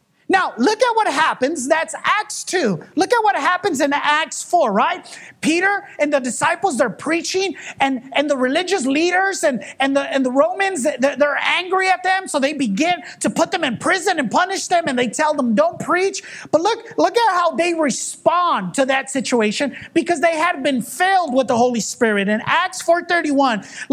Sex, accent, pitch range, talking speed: male, American, 275-370 Hz, 195 wpm